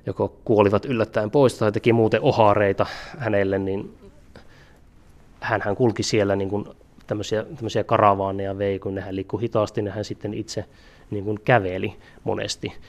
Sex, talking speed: male, 145 wpm